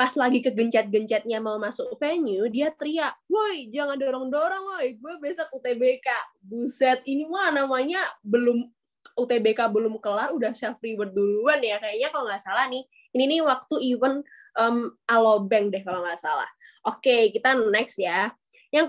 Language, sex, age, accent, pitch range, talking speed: Indonesian, female, 20-39, native, 220-295 Hz, 155 wpm